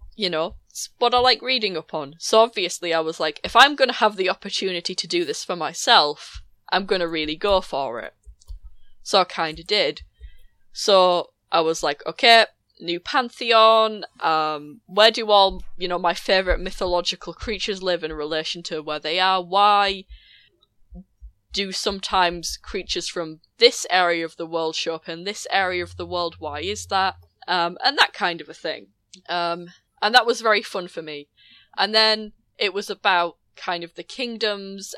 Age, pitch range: 10-29, 165-205 Hz